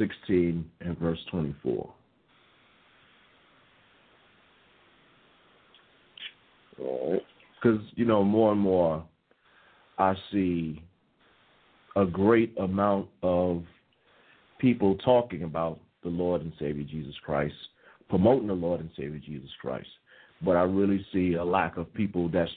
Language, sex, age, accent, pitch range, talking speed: English, male, 50-69, American, 85-105 Hz, 110 wpm